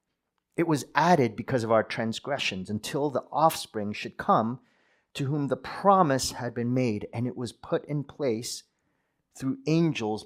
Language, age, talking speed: English, 40-59, 160 wpm